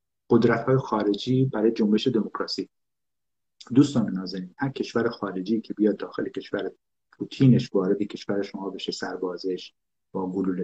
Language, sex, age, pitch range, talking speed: Persian, male, 50-69, 100-125 Hz, 125 wpm